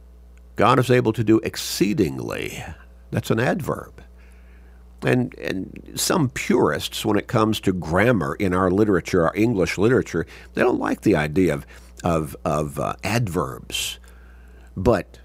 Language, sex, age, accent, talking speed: English, male, 50-69, American, 140 wpm